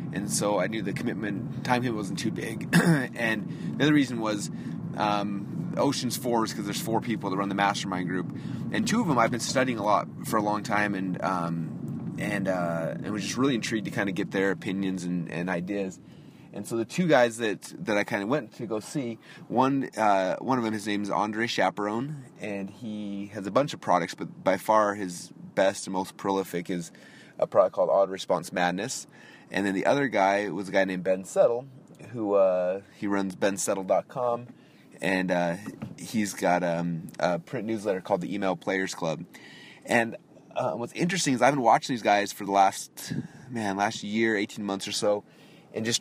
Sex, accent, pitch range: male, American, 95-120 Hz